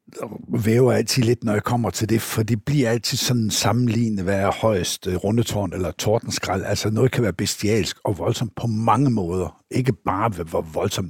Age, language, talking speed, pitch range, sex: 60-79, Danish, 190 wpm, 95-115 Hz, male